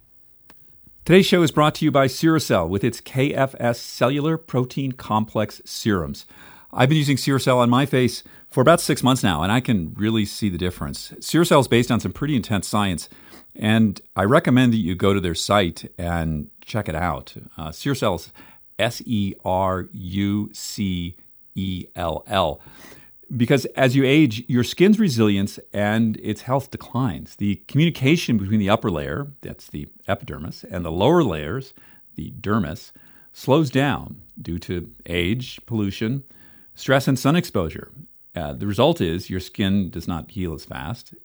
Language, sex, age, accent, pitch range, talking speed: English, male, 50-69, American, 100-135 Hz, 155 wpm